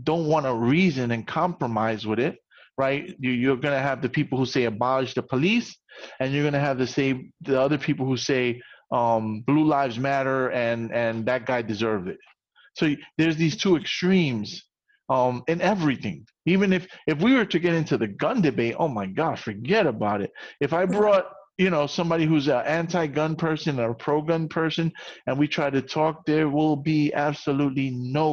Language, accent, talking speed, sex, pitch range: English, American, 190 wpm, male, 125-165 Hz